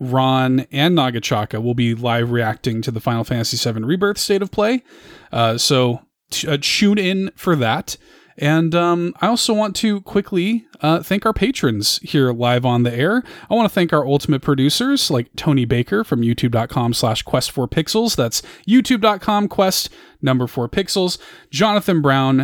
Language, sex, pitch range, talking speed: English, male, 125-185 Hz, 170 wpm